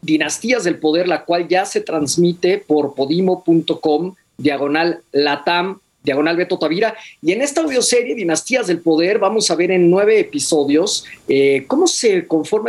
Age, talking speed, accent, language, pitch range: 50-69, 150 wpm, Mexican, Spanish, 145-220 Hz